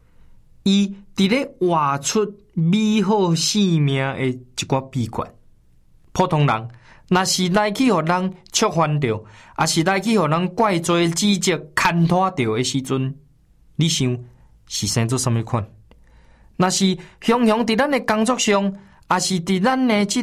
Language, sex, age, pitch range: Chinese, male, 20-39, 125-180 Hz